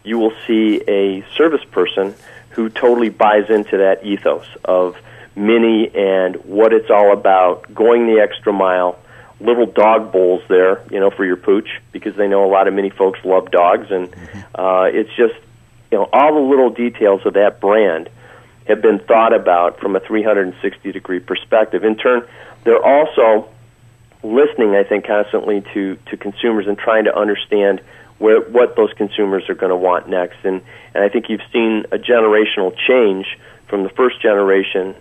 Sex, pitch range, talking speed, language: male, 95-115 Hz, 175 wpm, English